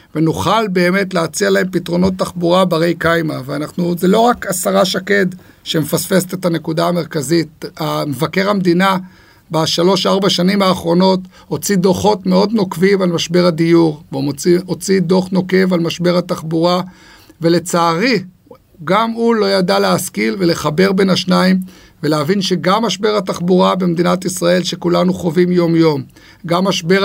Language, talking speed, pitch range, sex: Hebrew, 130 wpm, 175-200 Hz, male